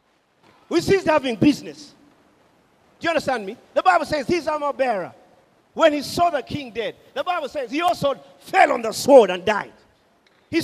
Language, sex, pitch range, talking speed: English, male, 175-275 Hz, 180 wpm